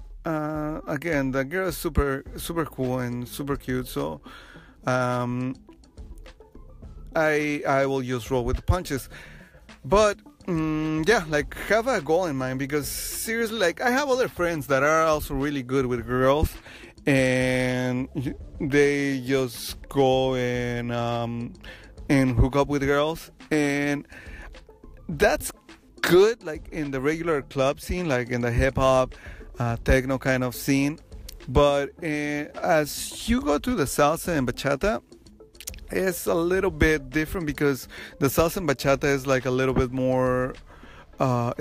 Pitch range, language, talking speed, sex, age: 125-150 Hz, English, 145 wpm, male, 30-49